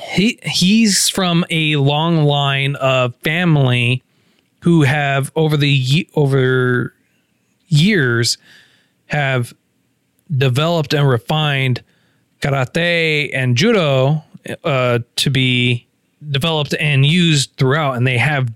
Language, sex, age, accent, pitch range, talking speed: English, male, 30-49, American, 125-155 Hz, 100 wpm